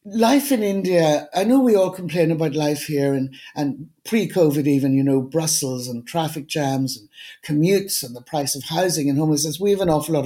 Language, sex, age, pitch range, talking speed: English, female, 60-79, 145-185 Hz, 205 wpm